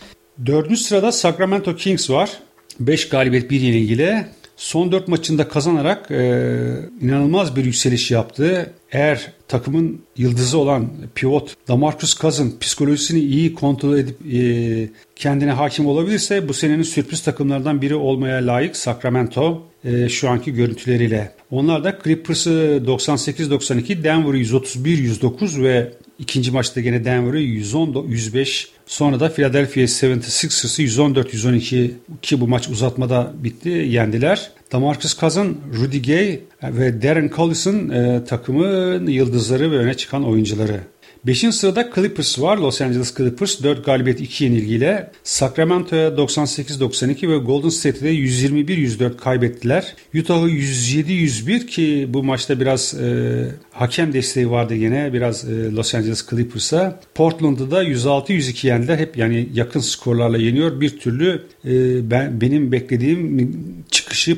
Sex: male